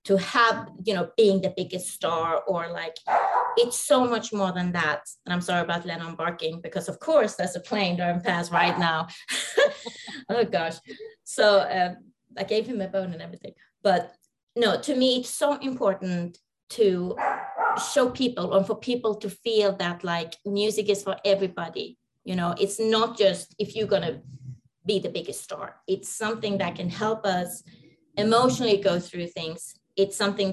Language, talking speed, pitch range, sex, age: English, 175 wpm, 180-215 Hz, female, 30-49